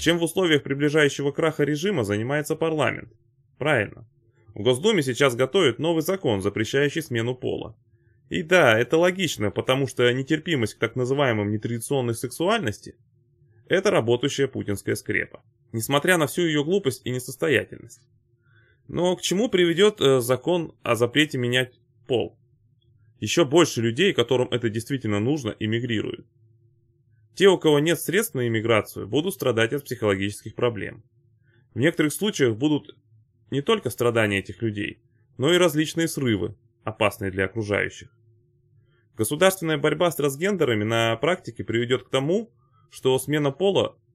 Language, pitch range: Russian, 115-150 Hz